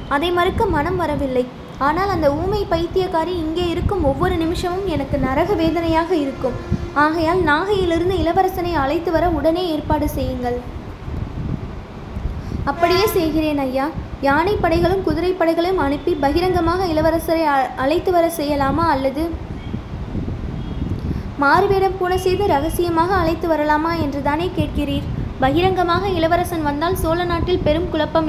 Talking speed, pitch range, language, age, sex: 115 wpm, 295-360 Hz, Tamil, 20-39, female